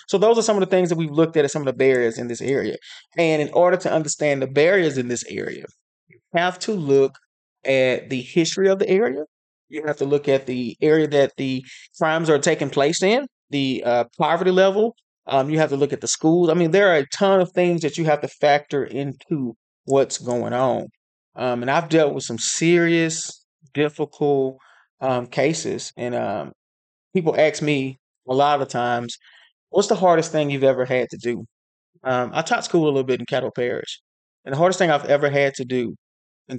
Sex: male